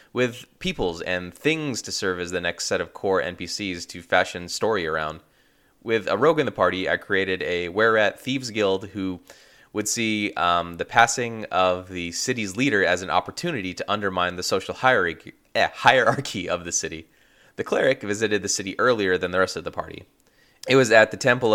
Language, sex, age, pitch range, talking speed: English, male, 20-39, 90-110 Hz, 185 wpm